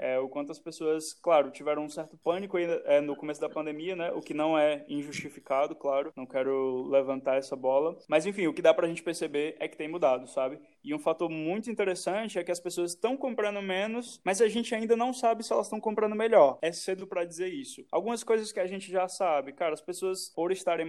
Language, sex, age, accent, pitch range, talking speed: Portuguese, male, 20-39, Brazilian, 145-190 Hz, 235 wpm